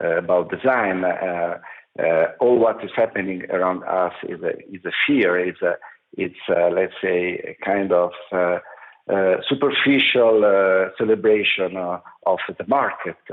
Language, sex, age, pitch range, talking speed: English, male, 50-69, 100-155 Hz, 150 wpm